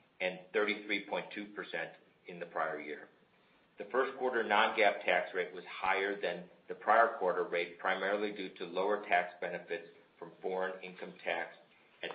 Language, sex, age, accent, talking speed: English, male, 50-69, American, 150 wpm